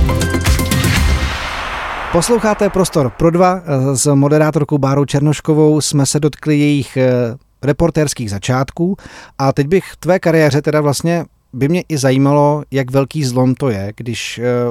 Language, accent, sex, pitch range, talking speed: Czech, native, male, 120-145 Hz, 125 wpm